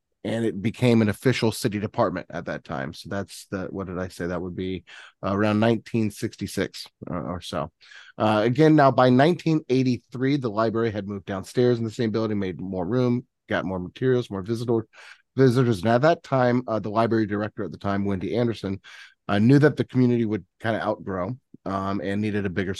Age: 30-49